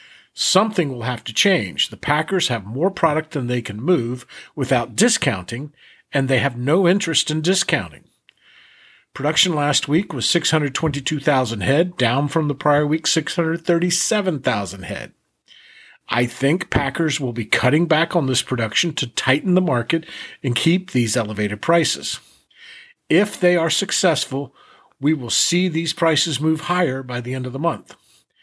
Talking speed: 150 wpm